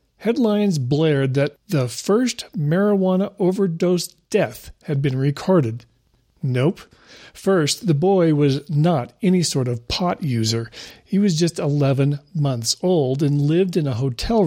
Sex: male